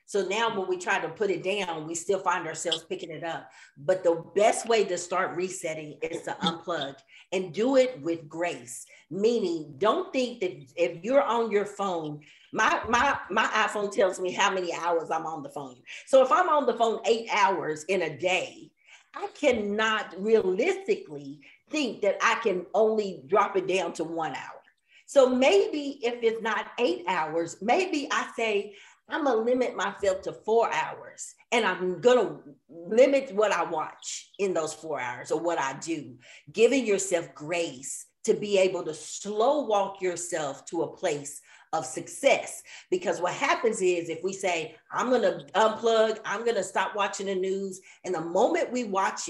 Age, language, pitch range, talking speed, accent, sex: 40-59, English, 170-235 Hz, 180 wpm, American, female